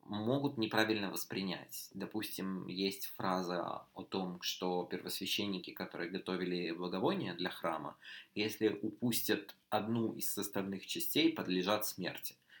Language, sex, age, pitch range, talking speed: Russian, male, 20-39, 95-110 Hz, 110 wpm